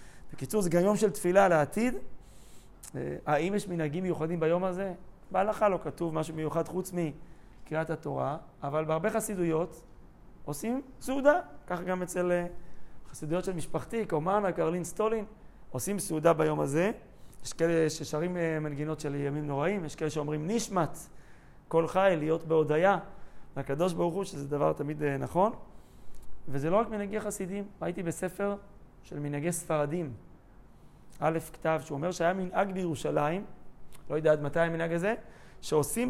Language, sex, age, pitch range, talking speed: Hebrew, male, 30-49, 150-200 Hz, 140 wpm